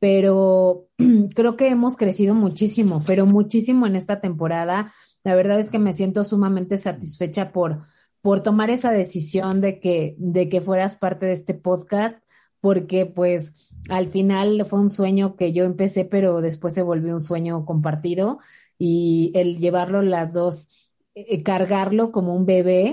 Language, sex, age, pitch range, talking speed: Spanish, female, 30-49, 175-200 Hz, 155 wpm